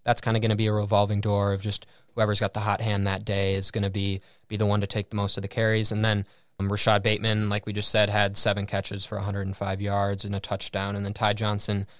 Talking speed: 270 wpm